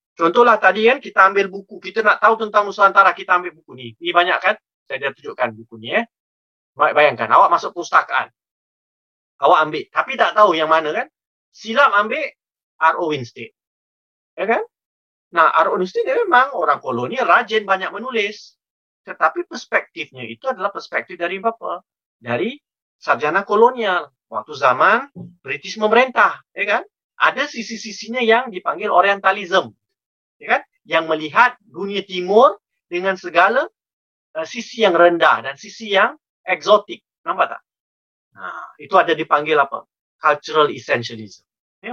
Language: Malay